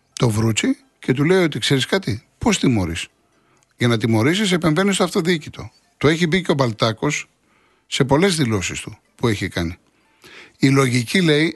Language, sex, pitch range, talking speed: Greek, male, 115-160 Hz, 165 wpm